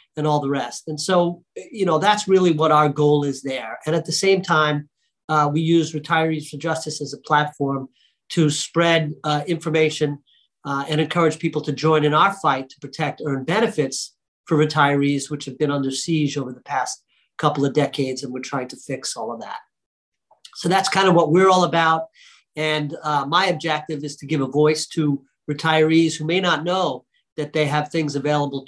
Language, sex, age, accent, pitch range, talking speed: English, male, 40-59, American, 145-165 Hz, 200 wpm